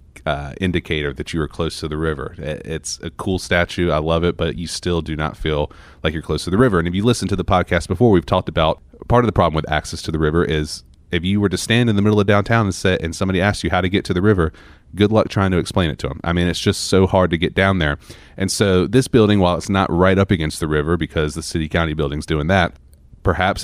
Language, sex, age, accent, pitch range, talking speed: English, male, 30-49, American, 80-95 Hz, 280 wpm